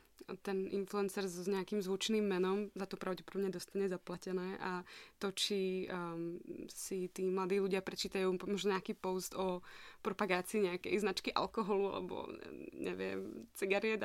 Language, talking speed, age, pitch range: Slovak, 130 wpm, 20-39, 185-210 Hz